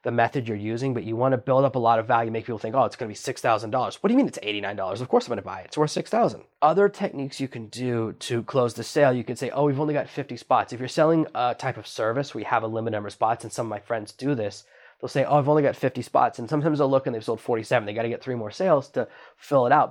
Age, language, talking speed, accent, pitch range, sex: 20-39, English, 315 wpm, American, 120-155 Hz, male